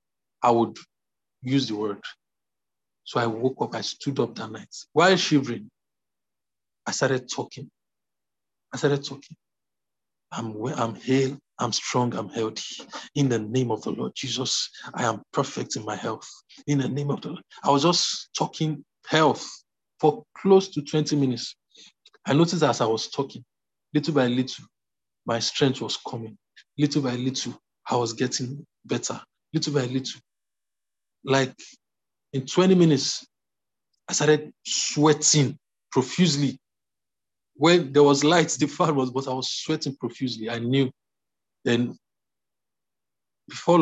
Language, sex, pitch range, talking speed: English, male, 120-150 Hz, 145 wpm